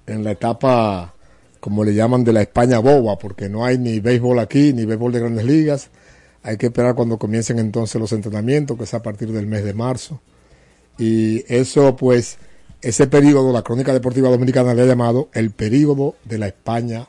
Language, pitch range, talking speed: Spanish, 110-130 Hz, 190 wpm